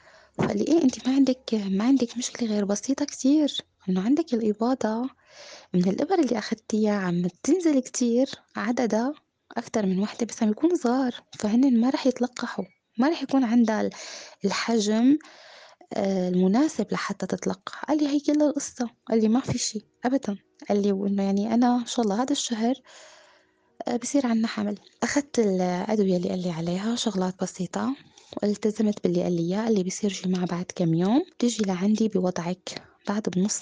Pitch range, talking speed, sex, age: 195-245 Hz, 160 wpm, female, 20-39